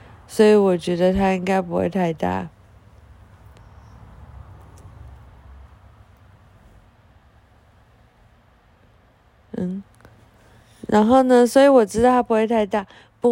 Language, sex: Chinese, female